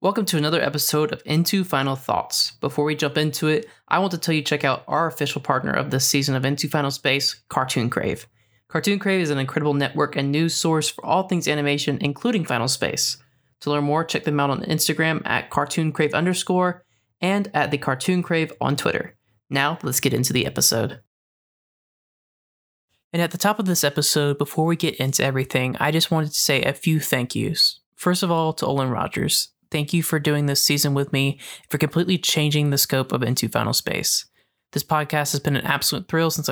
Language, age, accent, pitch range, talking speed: English, 20-39, American, 135-160 Hz, 205 wpm